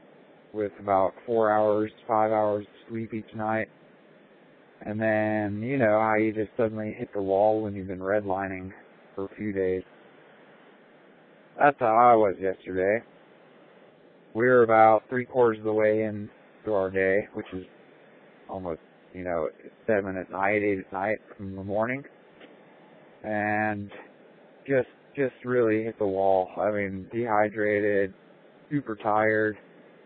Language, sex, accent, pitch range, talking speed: English, male, American, 100-115 Hz, 145 wpm